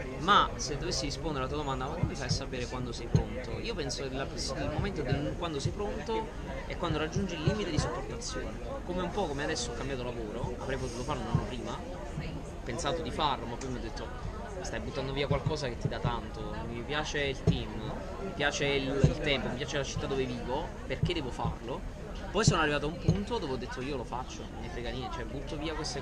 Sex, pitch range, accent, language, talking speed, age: male, 125-155 Hz, native, Italian, 220 wpm, 20-39